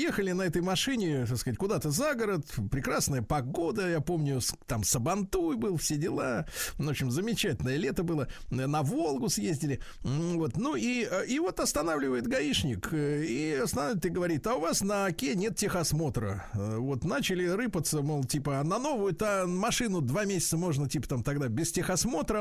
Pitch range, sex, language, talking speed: 145-200 Hz, male, Russian, 160 wpm